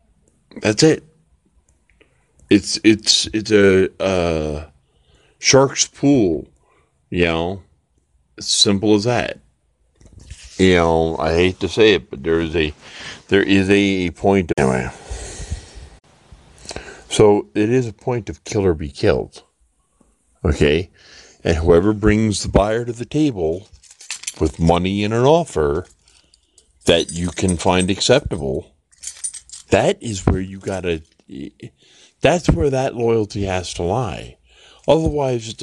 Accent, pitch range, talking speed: American, 80-110 Hz, 125 wpm